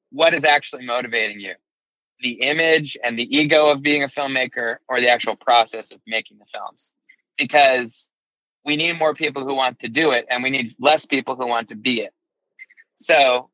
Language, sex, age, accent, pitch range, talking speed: English, male, 20-39, American, 115-140 Hz, 190 wpm